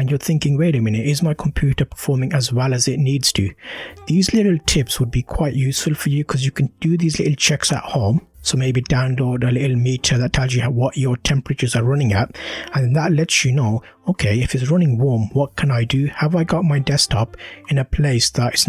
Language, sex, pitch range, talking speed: English, male, 125-150 Hz, 230 wpm